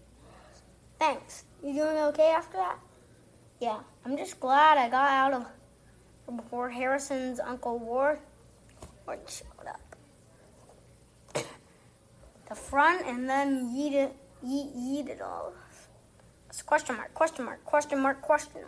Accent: American